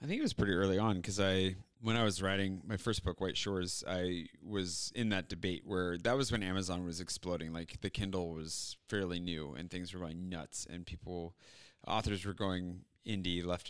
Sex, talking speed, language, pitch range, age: male, 215 wpm, English, 90-105 Hz, 30-49